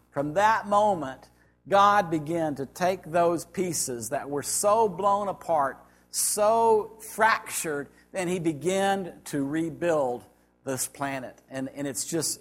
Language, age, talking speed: English, 50-69, 130 wpm